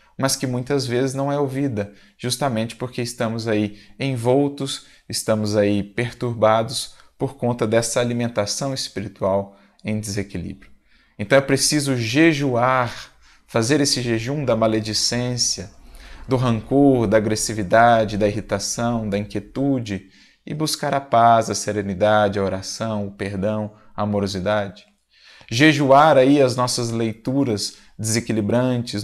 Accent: Brazilian